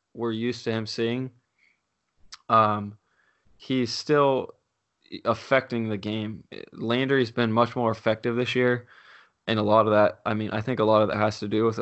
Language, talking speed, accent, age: English, 185 wpm, American, 20-39